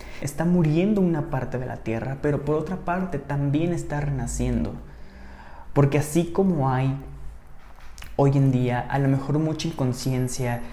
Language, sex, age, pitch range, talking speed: Spanish, male, 20-39, 115-155 Hz, 145 wpm